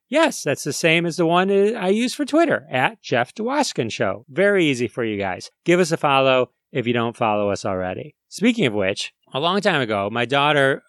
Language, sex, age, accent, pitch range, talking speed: English, male, 30-49, American, 115-160 Hz, 215 wpm